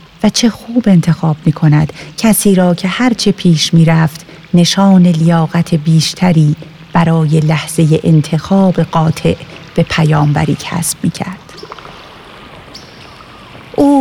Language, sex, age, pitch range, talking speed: Persian, female, 40-59, 165-210 Hz, 105 wpm